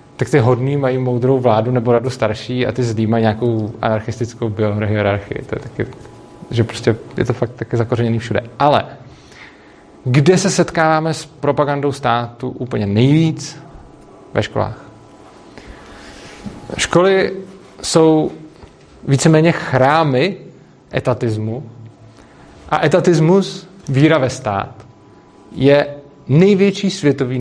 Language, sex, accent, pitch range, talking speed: Czech, male, native, 120-150 Hz, 110 wpm